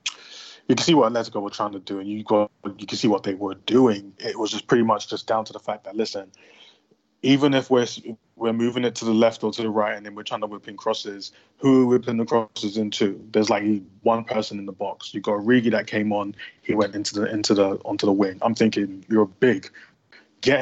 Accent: British